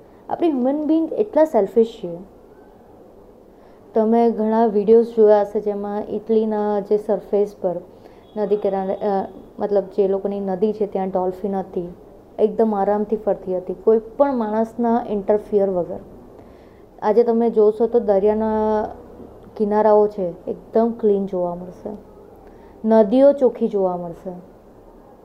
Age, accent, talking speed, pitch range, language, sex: 20-39, native, 120 wpm, 200-235 Hz, Gujarati, female